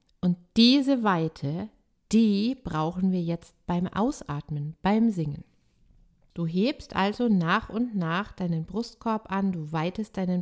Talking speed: 130 wpm